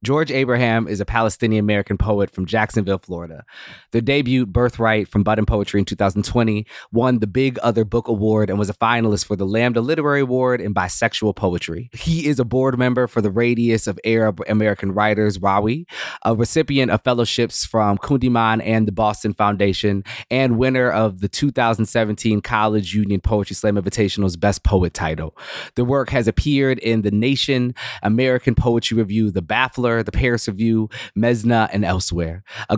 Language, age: English, 20-39